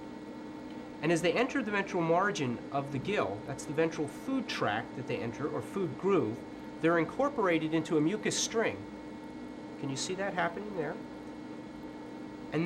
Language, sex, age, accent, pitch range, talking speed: English, male, 30-49, American, 140-180 Hz, 160 wpm